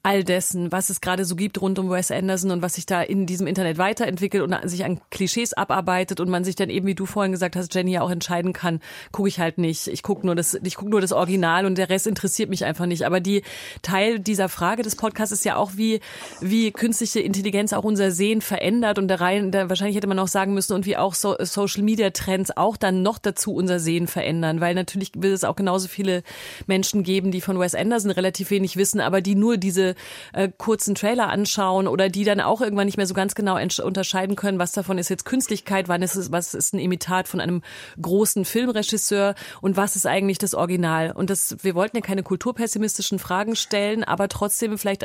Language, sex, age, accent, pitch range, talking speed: German, female, 30-49, German, 185-205 Hz, 230 wpm